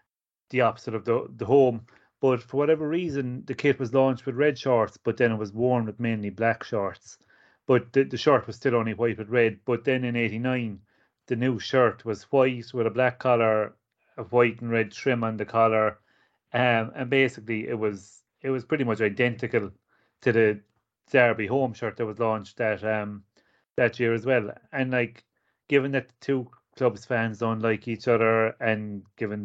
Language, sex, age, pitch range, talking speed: English, male, 30-49, 110-125 Hz, 195 wpm